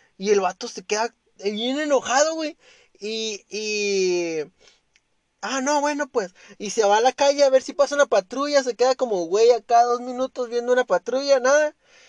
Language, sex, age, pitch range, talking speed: Spanish, male, 20-39, 200-260 Hz, 185 wpm